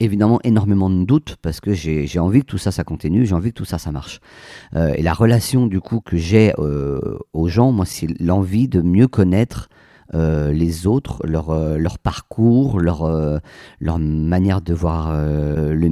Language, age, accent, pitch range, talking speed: French, 50-69, French, 80-110 Hz, 200 wpm